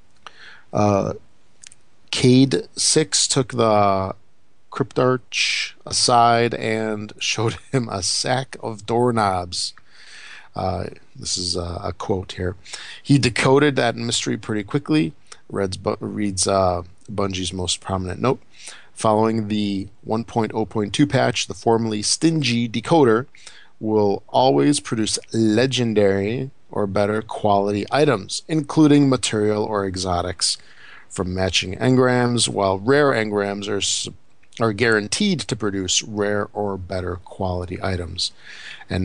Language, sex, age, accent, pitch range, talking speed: English, male, 50-69, American, 95-120 Hz, 110 wpm